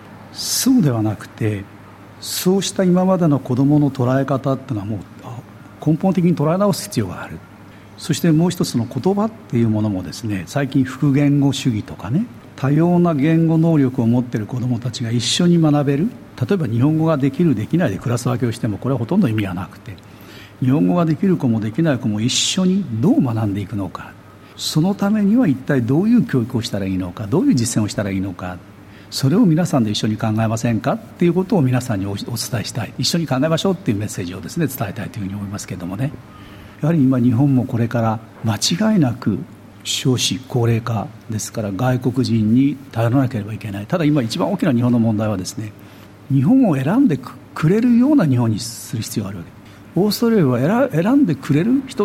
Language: Japanese